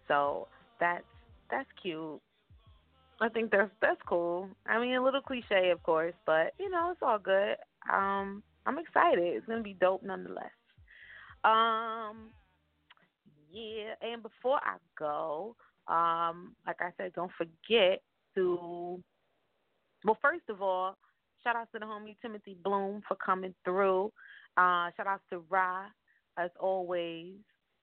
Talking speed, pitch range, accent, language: 135 wpm, 175-220 Hz, American, English